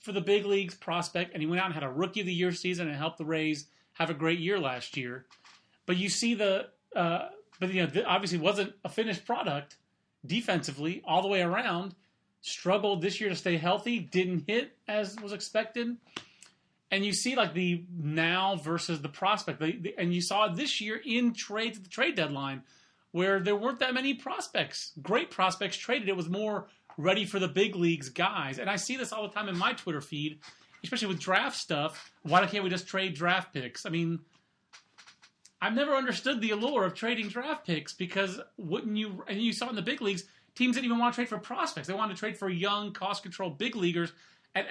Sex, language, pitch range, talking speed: male, English, 170-215 Hz, 215 wpm